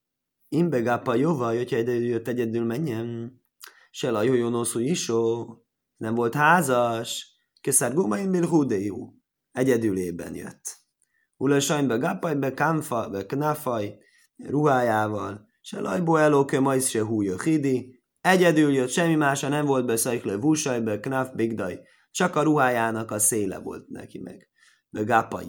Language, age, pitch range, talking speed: Hungarian, 20-39, 115-150 Hz, 135 wpm